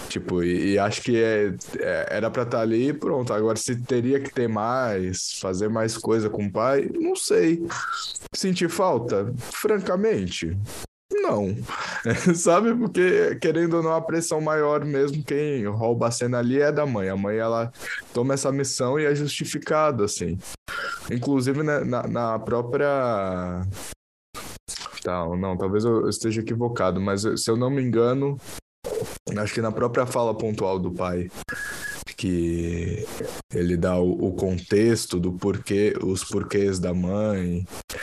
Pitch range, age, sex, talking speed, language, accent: 95-135 Hz, 10-29, male, 150 wpm, Portuguese, Brazilian